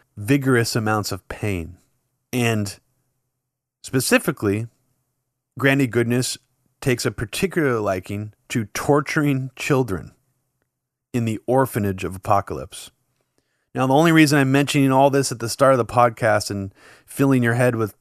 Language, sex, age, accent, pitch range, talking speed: English, male, 30-49, American, 115-135 Hz, 130 wpm